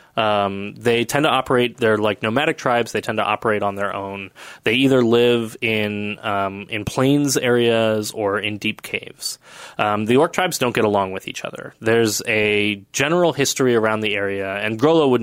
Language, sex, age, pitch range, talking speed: English, male, 20-39, 105-125 Hz, 190 wpm